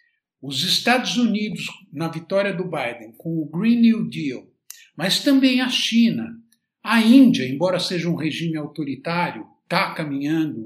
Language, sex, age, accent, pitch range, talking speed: Portuguese, male, 60-79, Brazilian, 155-225 Hz, 140 wpm